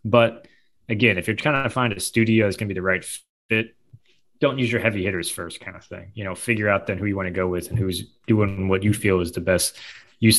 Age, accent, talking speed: 20-39, American, 265 wpm